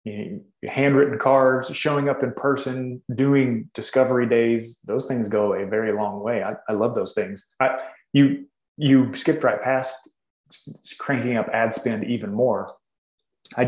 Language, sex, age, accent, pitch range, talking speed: English, male, 20-39, American, 120-140 Hz, 160 wpm